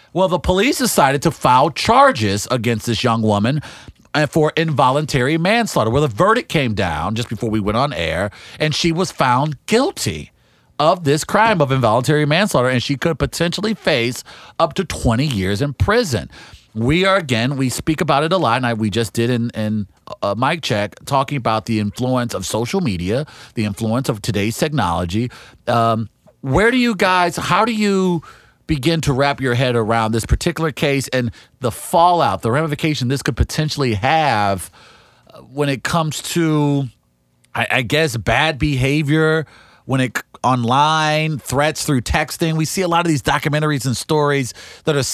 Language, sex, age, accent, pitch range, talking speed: English, male, 40-59, American, 120-160 Hz, 170 wpm